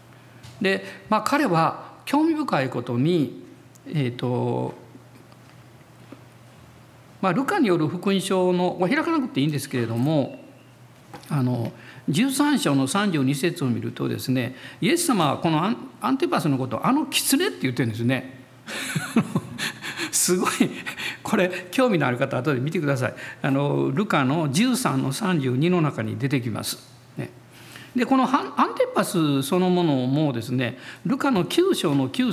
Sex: male